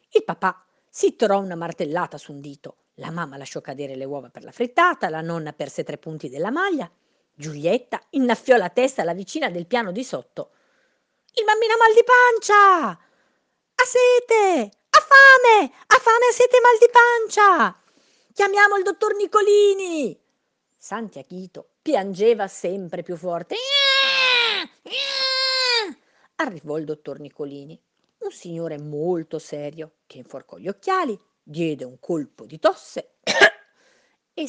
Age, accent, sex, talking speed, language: 40-59, native, female, 140 wpm, Italian